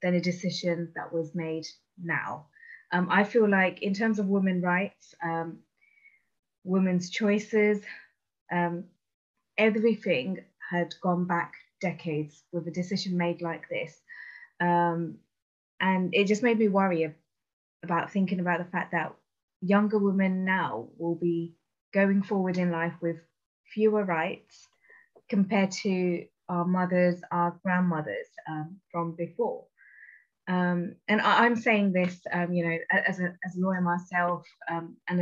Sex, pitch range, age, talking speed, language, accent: female, 175-210 Hz, 20-39, 140 wpm, English, British